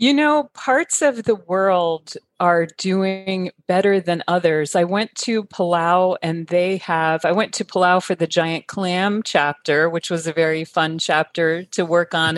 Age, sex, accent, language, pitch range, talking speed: 40-59, female, American, English, 160-185 Hz, 175 wpm